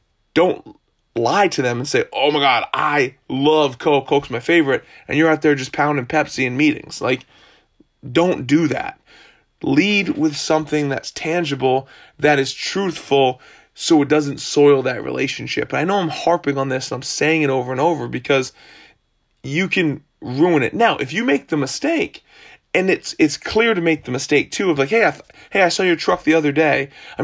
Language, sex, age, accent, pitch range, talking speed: English, male, 20-39, American, 135-165 Hz, 200 wpm